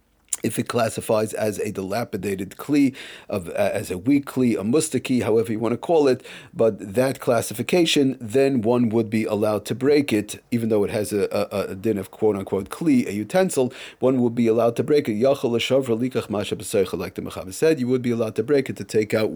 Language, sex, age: English, male, 40-59